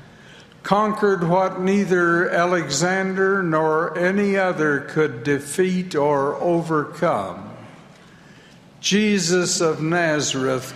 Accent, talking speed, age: American, 80 wpm, 60-79